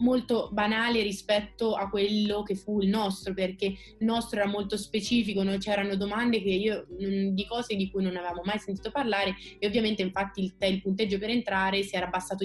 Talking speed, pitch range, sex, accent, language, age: 195 wpm, 190-215 Hz, female, native, Italian, 20-39